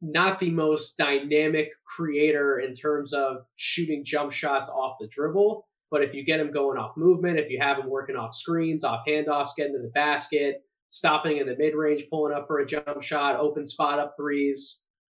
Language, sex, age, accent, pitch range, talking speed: English, male, 20-39, American, 140-170 Hz, 195 wpm